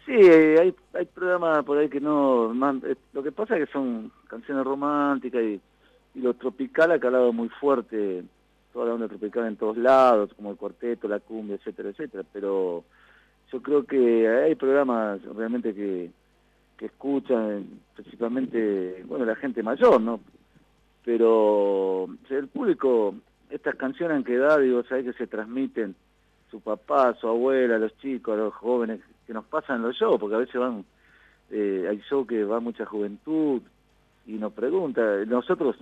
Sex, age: male, 40-59